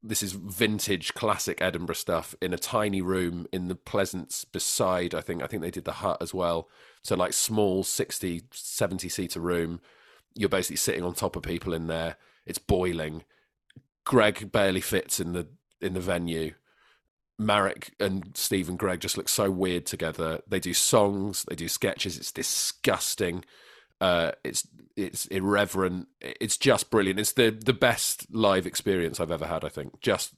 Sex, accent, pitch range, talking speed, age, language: male, British, 85-100 Hz, 170 wpm, 30-49, English